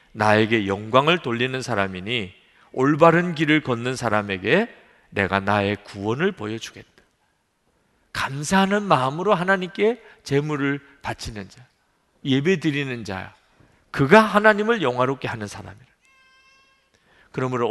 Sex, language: male, Korean